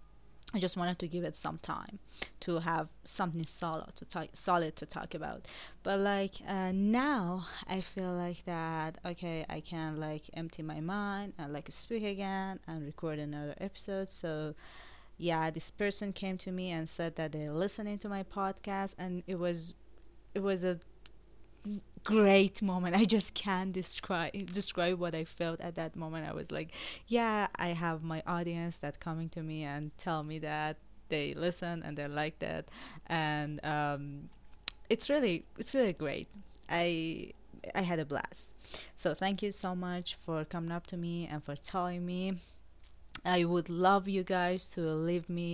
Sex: female